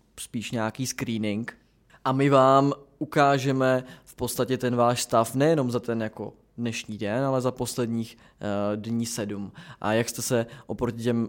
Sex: male